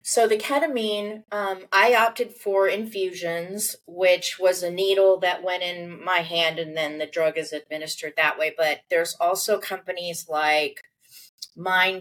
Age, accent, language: 30-49, American, English